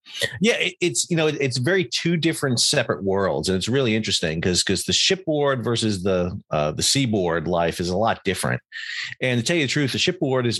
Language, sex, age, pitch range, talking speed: English, male, 40-59, 95-125 Hz, 210 wpm